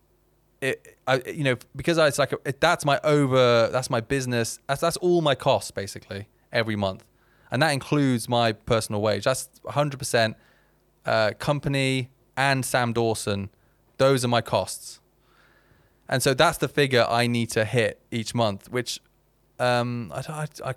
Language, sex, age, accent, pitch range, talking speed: English, male, 20-39, British, 105-130 Hz, 165 wpm